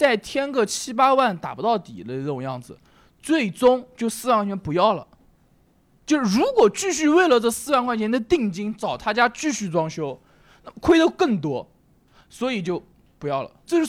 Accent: native